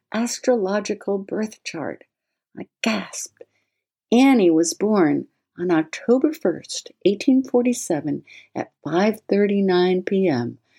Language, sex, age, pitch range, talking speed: English, female, 60-79, 145-215 Hz, 105 wpm